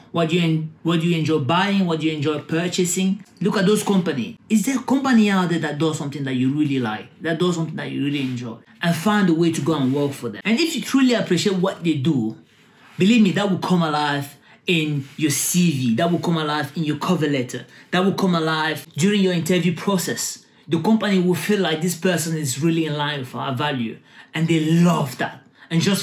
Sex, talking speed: male, 225 wpm